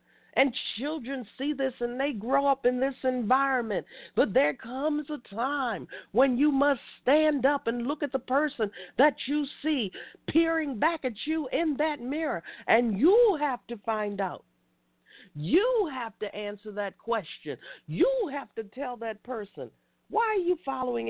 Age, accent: 50-69, American